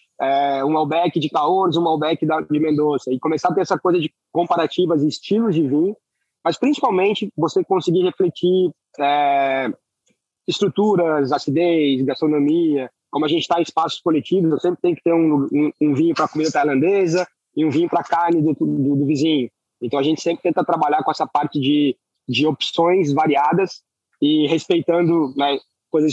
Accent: Brazilian